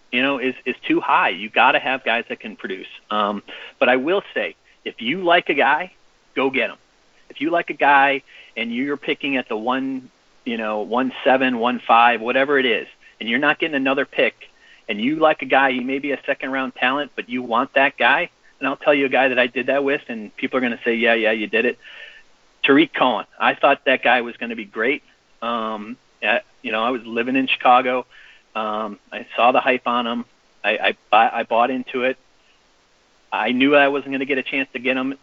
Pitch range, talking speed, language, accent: 120-140 Hz, 235 wpm, English, American